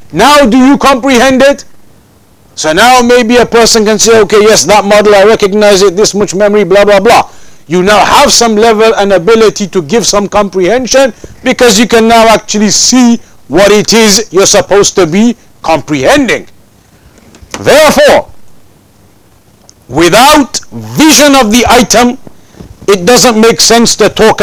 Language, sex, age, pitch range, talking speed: English, male, 50-69, 185-240 Hz, 150 wpm